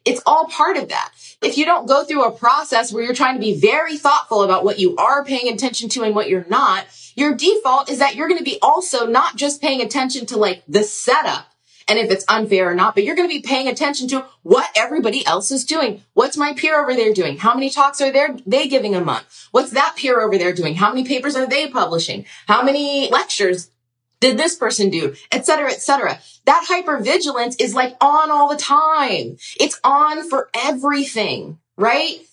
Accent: American